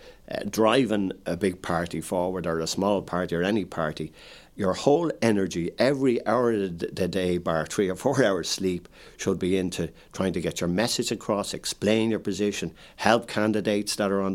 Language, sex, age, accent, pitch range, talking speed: English, male, 60-79, Irish, 85-105 Hz, 185 wpm